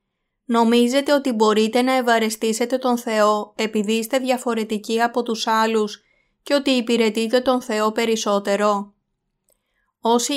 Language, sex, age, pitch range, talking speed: Greek, female, 20-39, 220-255 Hz, 115 wpm